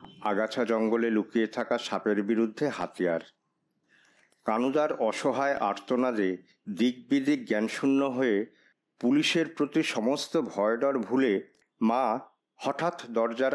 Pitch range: 105-135 Hz